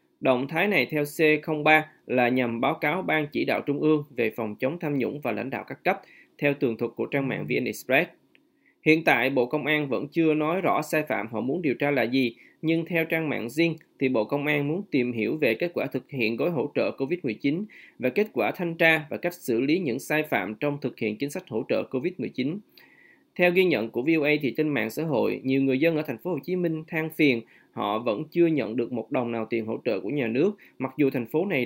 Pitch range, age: 130-160 Hz, 20-39